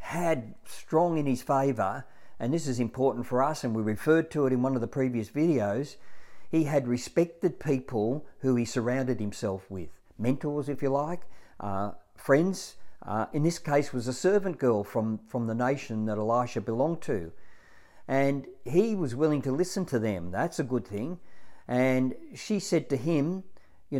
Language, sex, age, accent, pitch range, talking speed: English, male, 50-69, Australian, 115-155 Hz, 180 wpm